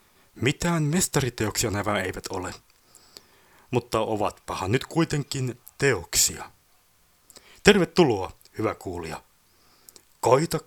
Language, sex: Finnish, male